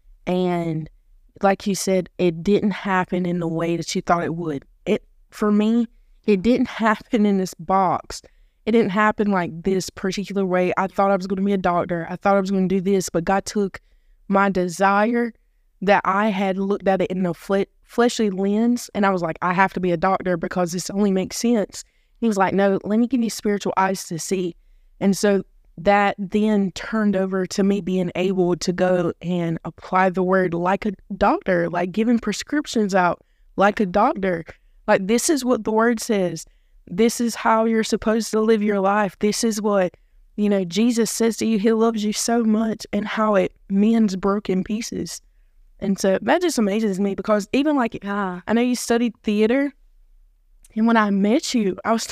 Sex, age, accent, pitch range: female, 20-39, American, 185-220 Hz